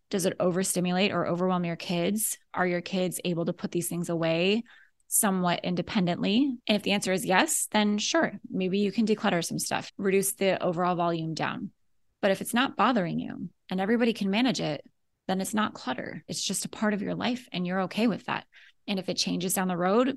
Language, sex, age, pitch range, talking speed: English, female, 20-39, 180-220 Hz, 210 wpm